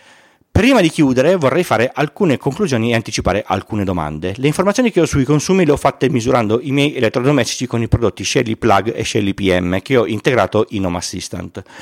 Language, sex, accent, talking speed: Italian, male, native, 195 wpm